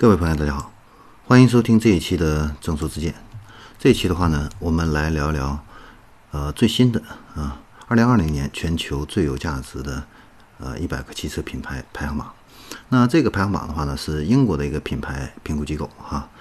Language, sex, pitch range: Chinese, male, 75-105 Hz